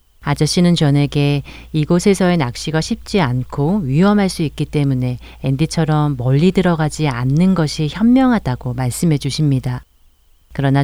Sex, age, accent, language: female, 40-59, native, Korean